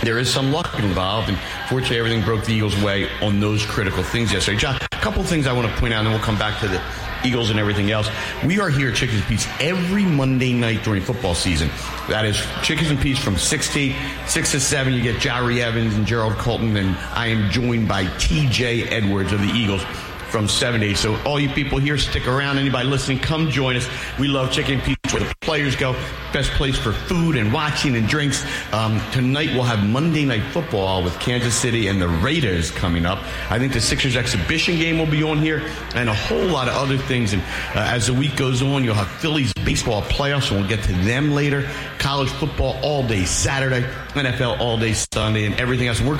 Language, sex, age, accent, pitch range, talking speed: English, male, 50-69, American, 105-140 Hz, 225 wpm